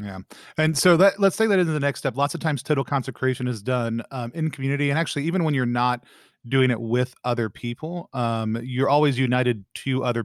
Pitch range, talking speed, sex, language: 115-135 Hz, 220 wpm, male, English